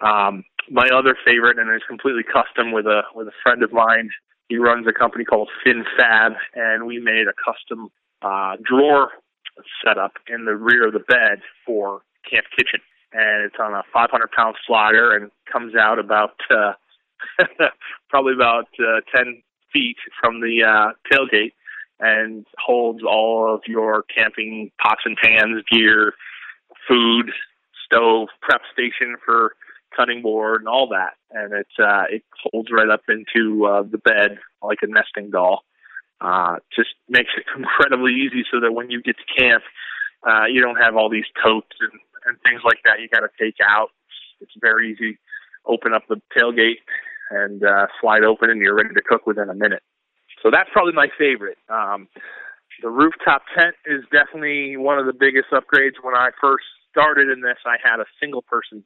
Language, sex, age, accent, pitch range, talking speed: English, male, 20-39, American, 110-130 Hz, 175 wpm